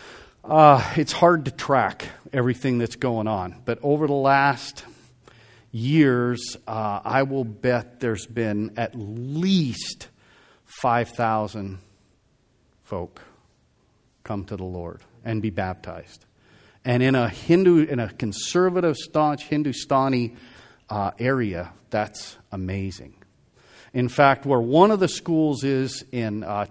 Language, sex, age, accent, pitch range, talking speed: English, male, 40-59, American, 105-130 Hz, 120 wpm